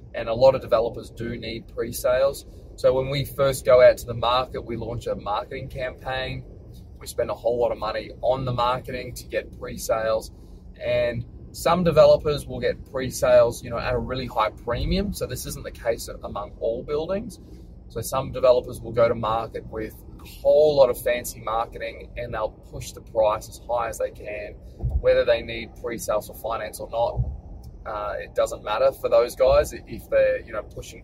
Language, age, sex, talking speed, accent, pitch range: English, 20-39, male, 195 wpm, Australian, 110-145 Hz